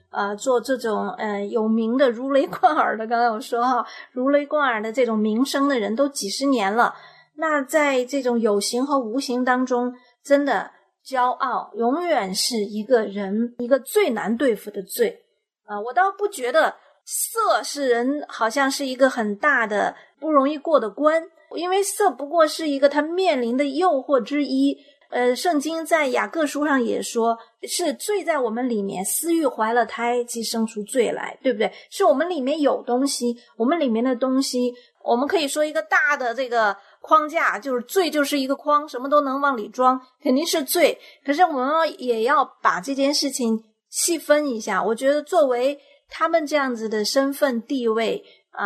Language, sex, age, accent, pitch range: Chinese, female, 30-49, native, 230-295 Hz